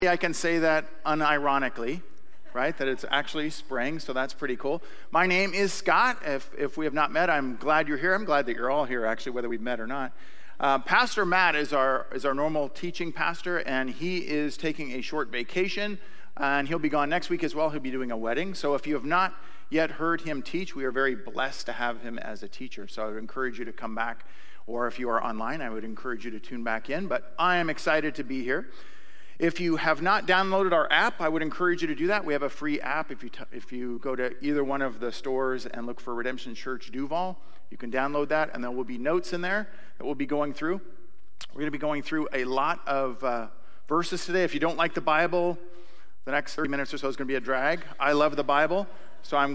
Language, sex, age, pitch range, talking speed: English, male, 40-59, 130-170 Hz, 250 wpm